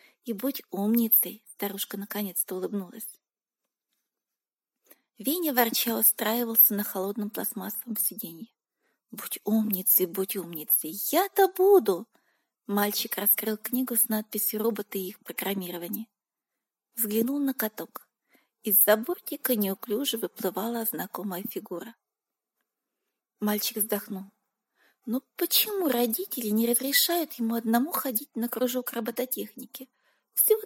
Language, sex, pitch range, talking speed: Russian, female, 205-260 Hz, 100 wpm